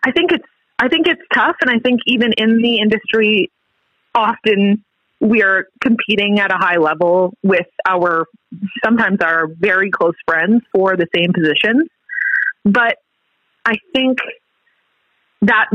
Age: 20-39